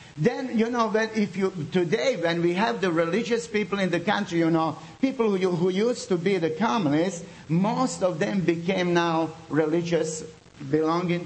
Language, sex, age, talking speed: English, male, 50-69, 165 wpm